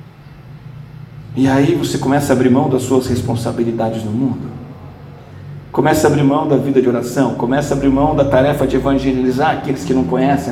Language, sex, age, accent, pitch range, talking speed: Portuguese, male, 50-69, Brazilian, 135-185 Hz, 185 wpm